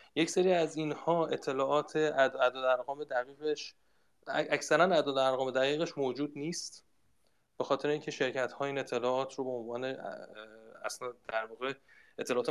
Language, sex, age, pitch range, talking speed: Persian, male, 30-49, 125-155 Hz, 120 wpm